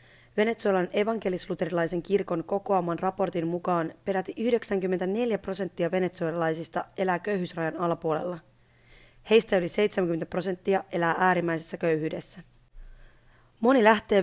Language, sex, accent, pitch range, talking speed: Finnish, female, native, 170-200 Hz, 95 wpm